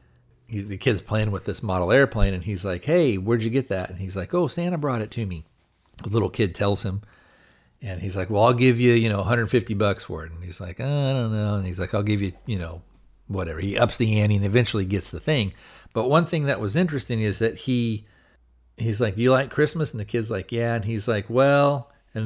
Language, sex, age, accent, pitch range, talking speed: English, male, 50-69, American, 95-120 Hz, 245 wpm